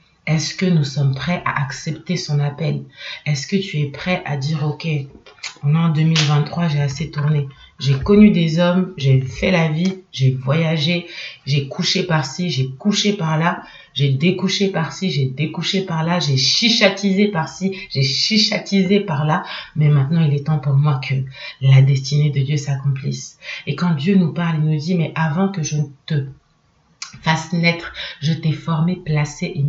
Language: French